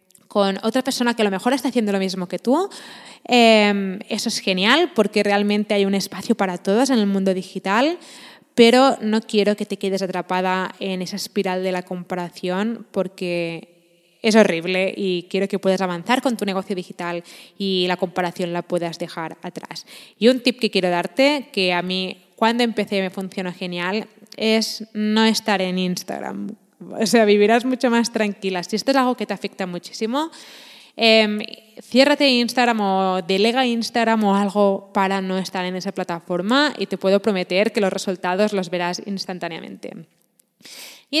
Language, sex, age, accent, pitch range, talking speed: Spanish, female, 20-39, Spanish, 185-225 Hz, 170 wpm